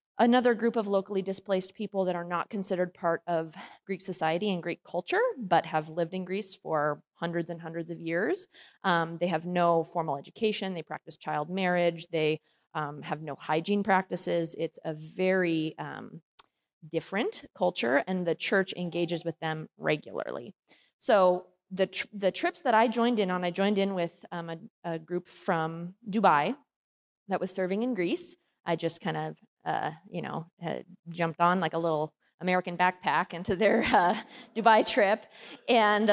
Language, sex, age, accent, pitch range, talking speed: English, female, 30-49, American, 170-210 Hz, 170 wpm